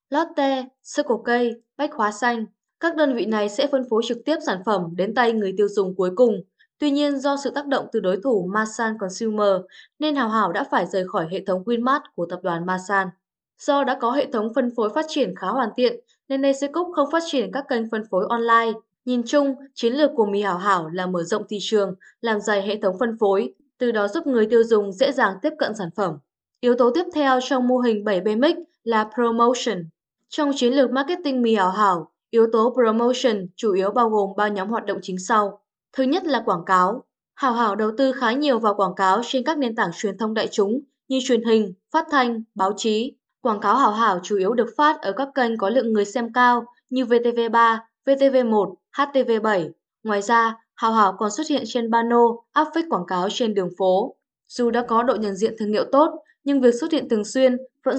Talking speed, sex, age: 225 wpm, female, 10-29